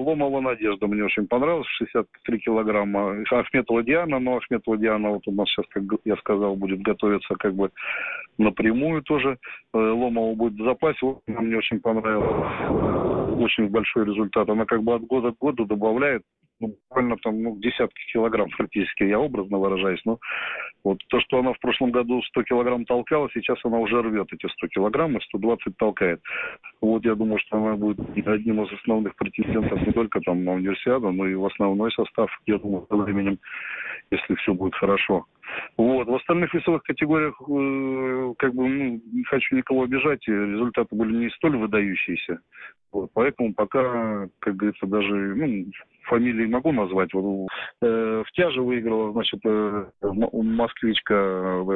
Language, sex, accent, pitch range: Russian, male, native, 105-125 Hz